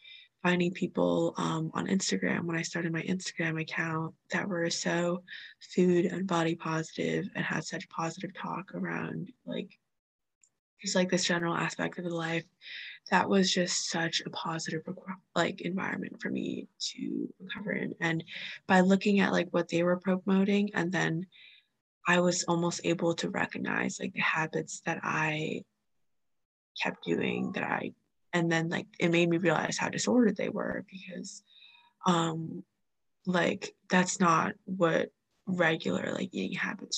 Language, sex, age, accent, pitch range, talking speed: English, female, 20-39, American, 170-200 Hz, 150 wpm